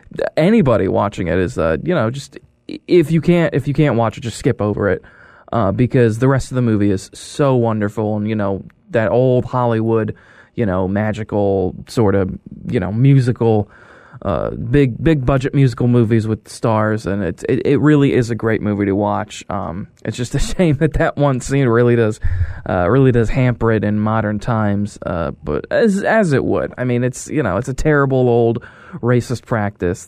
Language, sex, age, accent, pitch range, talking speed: English, male, 20-39, American, 105-135 Hz, 200 wpm